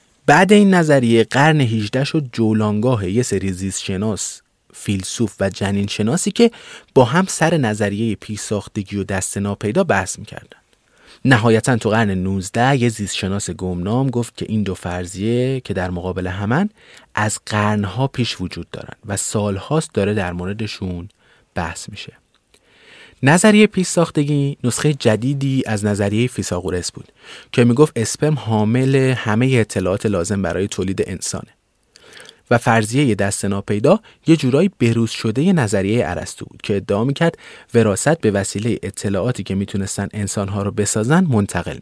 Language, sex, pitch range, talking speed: Persian, male, 100-135 Hz, 135 wpm